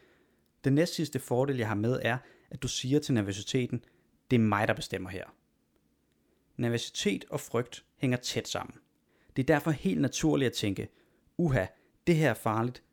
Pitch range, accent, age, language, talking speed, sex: 110-140 Hz, native, 30-49, Danish, 165 wpm, male